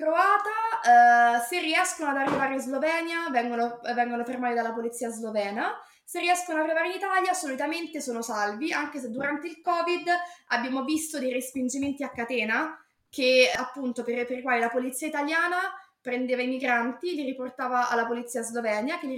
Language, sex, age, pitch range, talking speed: Italian, female, 20-39, 240-310 Hz, 165 wpm